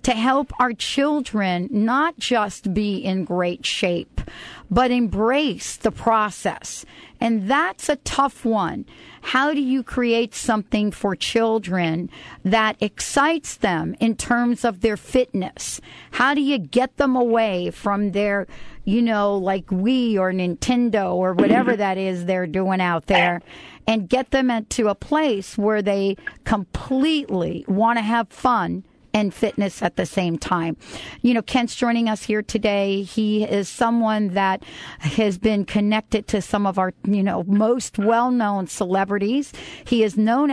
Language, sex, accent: English, female, American